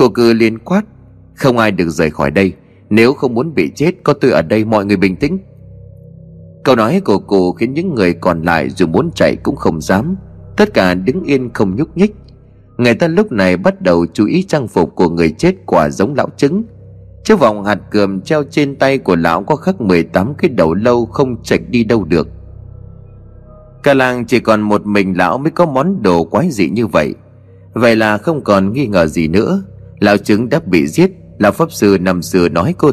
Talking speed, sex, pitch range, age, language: 215 wpm, male, 95-135 Hz, 30-49, Vietnamese